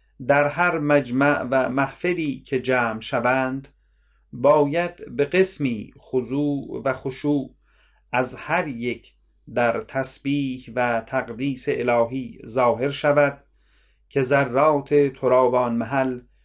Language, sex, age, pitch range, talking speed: Persian, male, 40-59, 125-145 Hz, 100 wpm